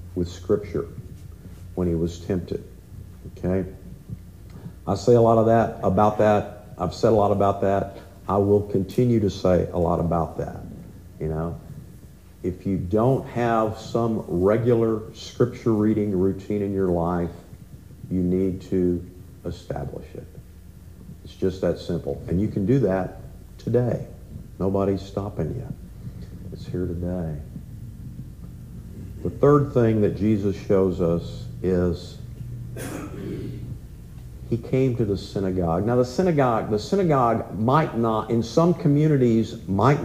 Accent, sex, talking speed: American, male, 135 wpm